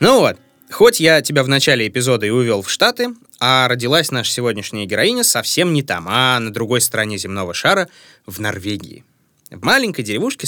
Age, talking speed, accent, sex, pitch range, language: 20-39, 180 wpm, native, male, 115-165 Hz, Russian